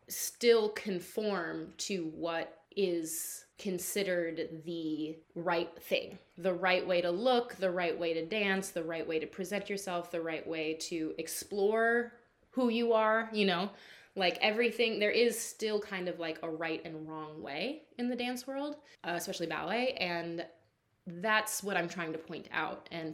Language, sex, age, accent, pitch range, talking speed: English, female, 20-39, American, 165-210 Hz, 165 wpm